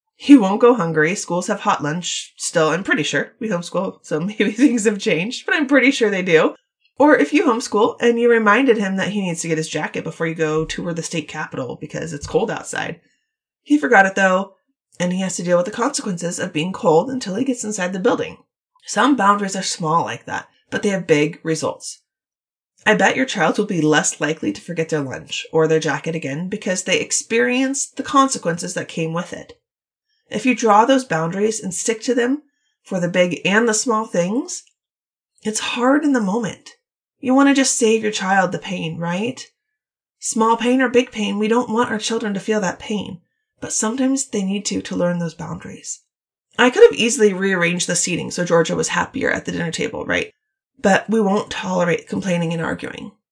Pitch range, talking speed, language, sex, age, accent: 175-250 Hz, 210 wpm, English, female, 20-39, American